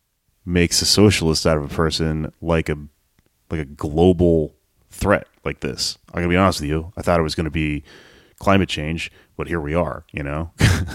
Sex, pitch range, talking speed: male, 75-85 Hz, 210 wpm